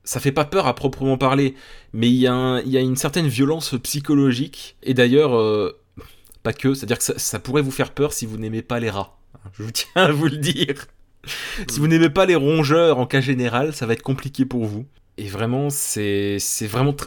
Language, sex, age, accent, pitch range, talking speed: French, male, 20-39, French, 105-135 Hz, 200 wpm